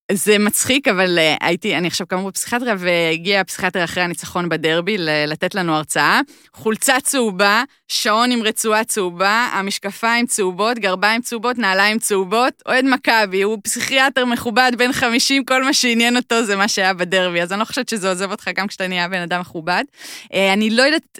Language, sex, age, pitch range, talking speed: Hebrew, female, 20-39, 175-220 Hz, 175 wpm